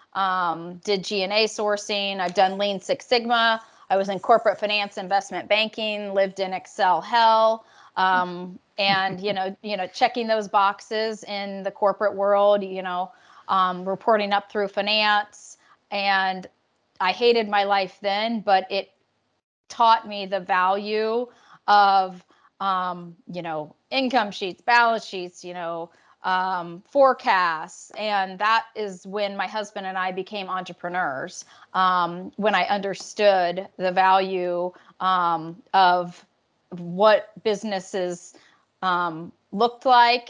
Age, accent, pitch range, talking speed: 30-49, American, 185-215 Hz, 130 wpm